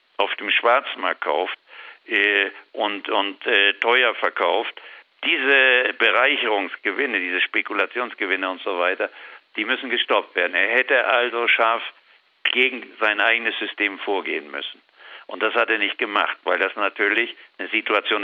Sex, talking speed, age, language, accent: male, 140 wpm, 60-79, German, German